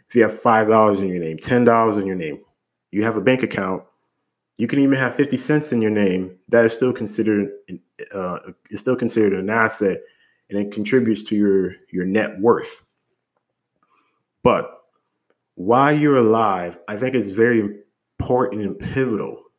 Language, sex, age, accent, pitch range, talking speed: English, male, 30-49, American, 100-125 Hz, 165 wpm